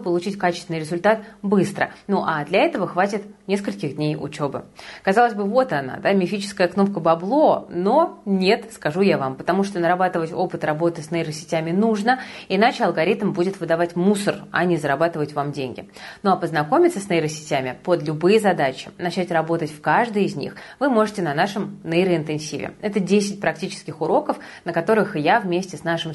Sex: female